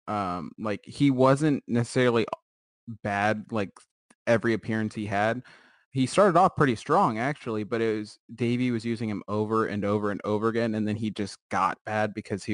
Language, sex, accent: English, male, American